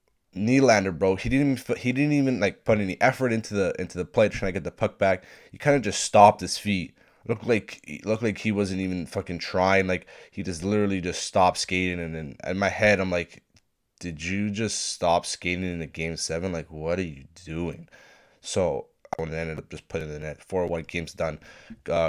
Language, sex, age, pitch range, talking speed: English, male, 20-39, 80-95 Hz, 230 wpm